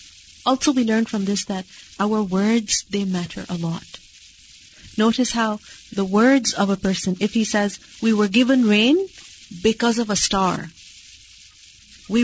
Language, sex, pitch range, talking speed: English, female, 200-255 Hz, 150 wpm